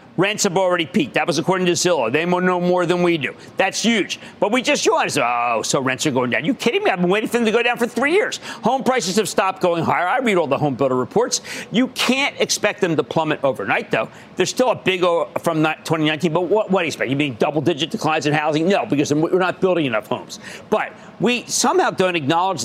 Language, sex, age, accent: English, male, 50-69, American